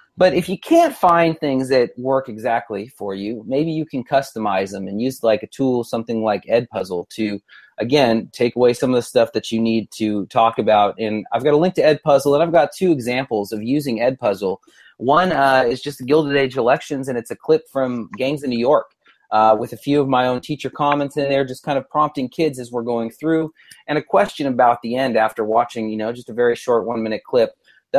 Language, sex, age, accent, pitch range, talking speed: English, male, 30-49, American, 110-140 Hz, 230 wpm